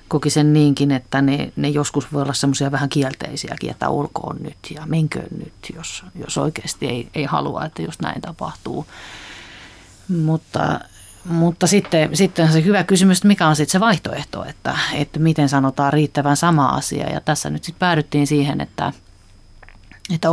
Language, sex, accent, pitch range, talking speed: Finnish, female, native, 140-160 Hz, 160 wpm